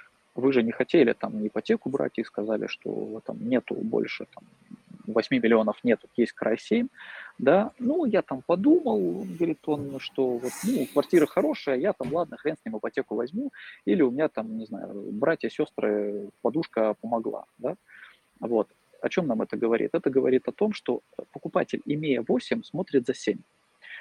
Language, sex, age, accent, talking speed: Russian, male, 20-39, native, 170 wpm